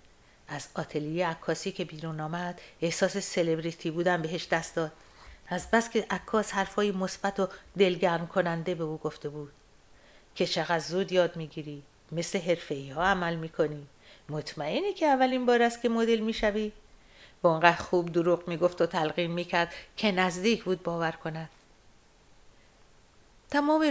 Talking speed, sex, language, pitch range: 140 wpm, female, Persian, 165-205 Hz